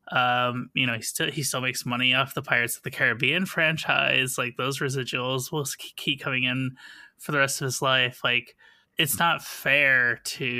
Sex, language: male, English